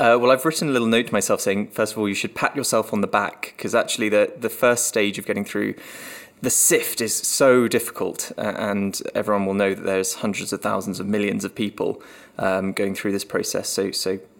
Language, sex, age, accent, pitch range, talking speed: English, male, 20-39, British, 100-115 Hz, 230 wpm